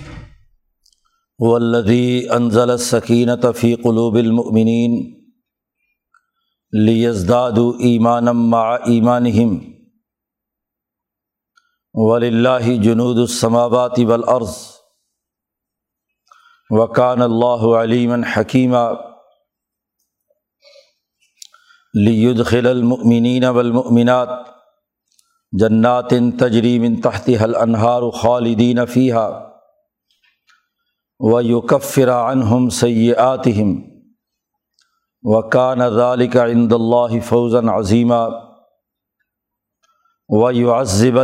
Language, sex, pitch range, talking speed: Urdu, male, 120-125 Hz, 55 wpm